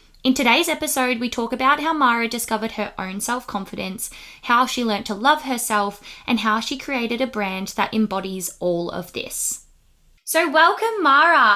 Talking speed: 165 wpm